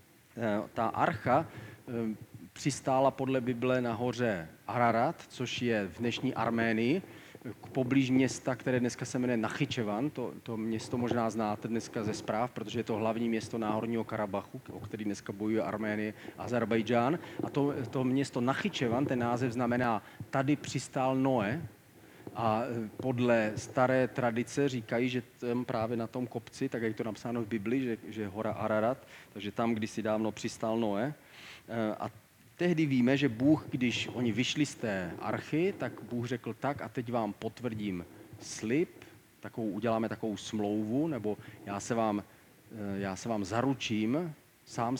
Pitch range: 110-125 Hz